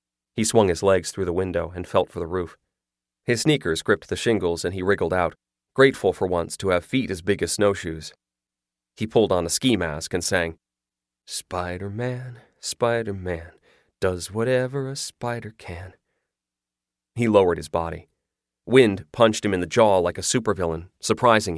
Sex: male